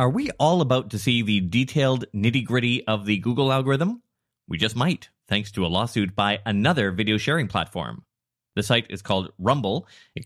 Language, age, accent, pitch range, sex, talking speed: English, 30-49, American, 105-160 Hz, male, 175 wpm